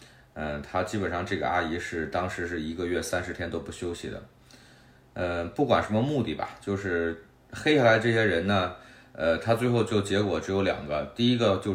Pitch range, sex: 80-105 Hz, male